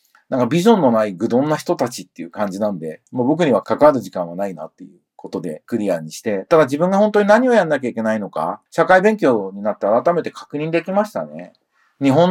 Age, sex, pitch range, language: 40-59, male, 105-175 Hz, Japanese